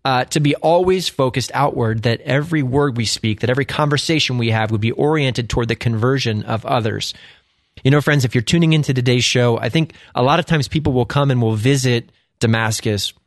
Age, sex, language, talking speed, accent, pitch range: 20-39, male, English, 210 wpm, American, 110-140 Hz